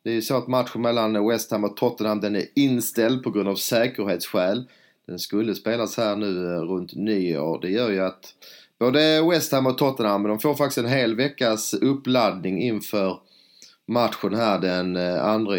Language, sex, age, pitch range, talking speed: English, male, 30-49, 95-120 Hz, 175 wpm